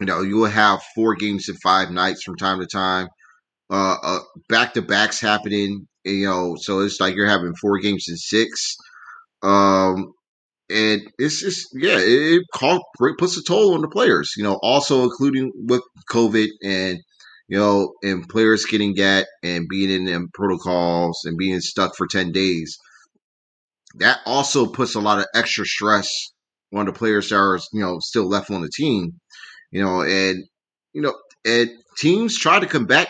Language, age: English, 30-49